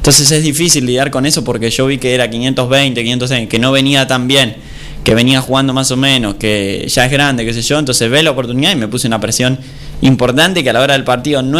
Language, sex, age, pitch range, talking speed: Spanish, male, 10-29, 115-140 Hz, 250 wpm